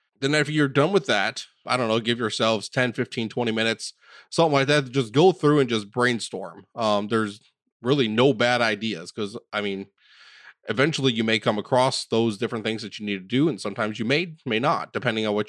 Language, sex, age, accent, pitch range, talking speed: English, male, 20-39, American, 110-135 Hz, 215 wpm